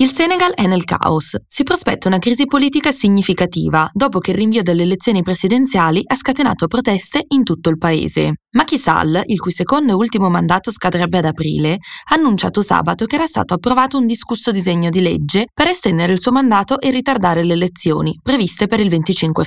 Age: 20-39